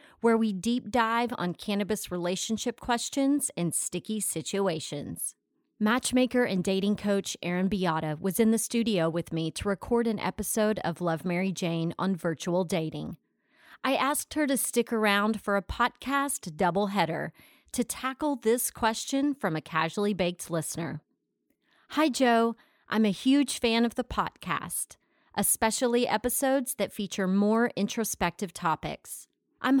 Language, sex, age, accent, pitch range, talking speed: English, female, 30-49, American, 180-240 Hz, 140 wpm